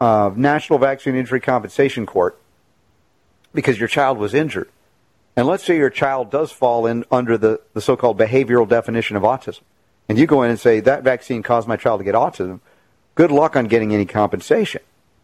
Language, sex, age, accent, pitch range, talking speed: English, male, 50-69, American, 115-135 Hz, 185 wpm